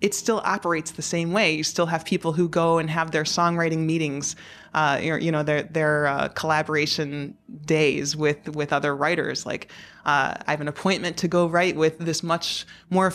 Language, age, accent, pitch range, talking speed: English, 20-39, American, 155-180 Hz, 190 wpm